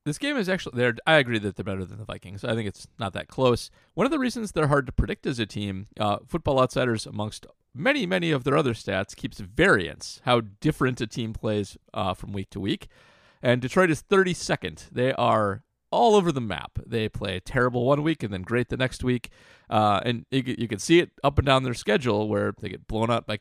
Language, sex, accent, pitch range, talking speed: English, male, American, 105-135 Hz, 230 wpm